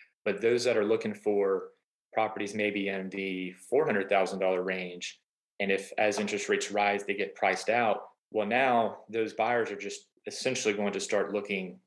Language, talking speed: English, 165 wpm